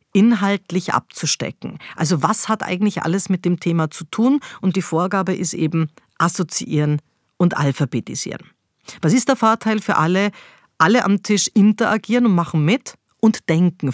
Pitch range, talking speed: 160-210 Hz, 150 wpm